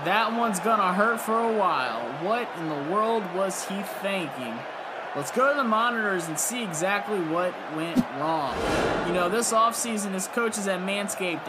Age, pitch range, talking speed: 20-39, 170-210 Hz, 170 wpm